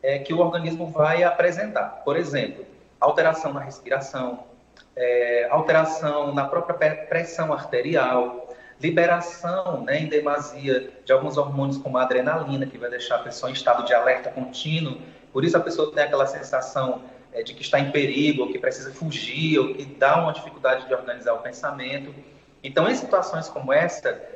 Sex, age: male, 30-49